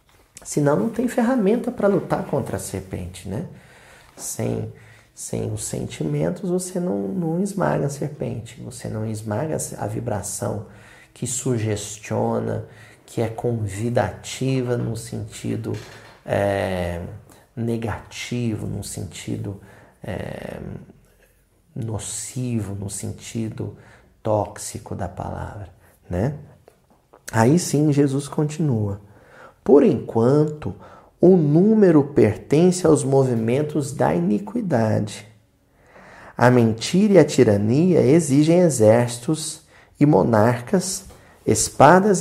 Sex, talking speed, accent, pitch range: male, 90 wpm, Brazilian, 105-150 Hz